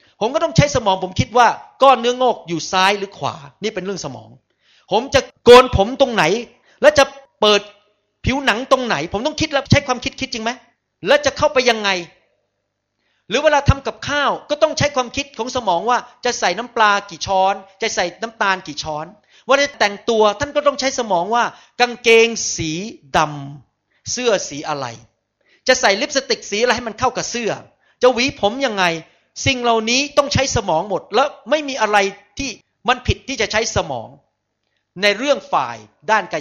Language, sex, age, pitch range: Thai, male, 30-49, 175-255 Hz